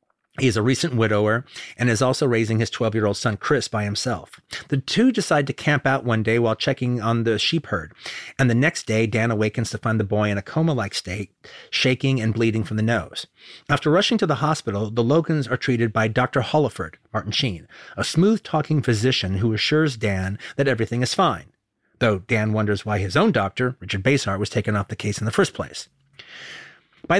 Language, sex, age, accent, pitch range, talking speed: English, male, 40-59, American, 110-145 Hz, 205 wpm